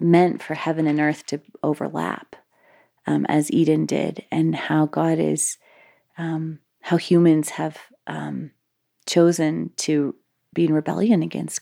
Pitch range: 155-180 Hz